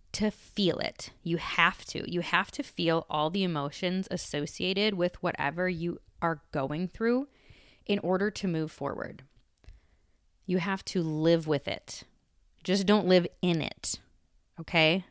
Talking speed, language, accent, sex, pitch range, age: 145 wpm, English, American, female, 155-195 Hz, 20-39